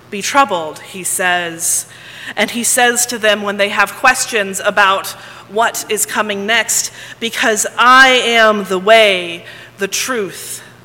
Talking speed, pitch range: 140 wpm, 180-220 Hz